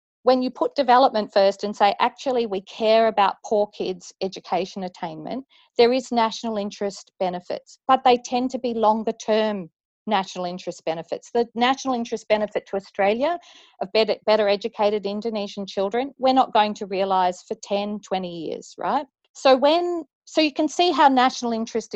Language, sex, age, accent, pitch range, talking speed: English, female, 40-59, Australian, 195-250 Hz, 165 wpm